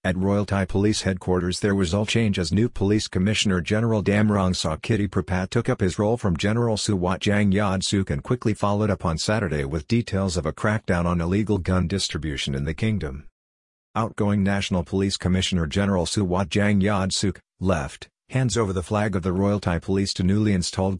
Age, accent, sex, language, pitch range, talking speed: 50-69, American, male, English, 90-105 Hz, 190 wpm